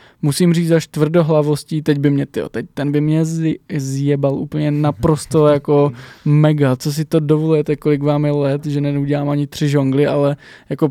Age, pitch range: 20-39, 140-150 Hz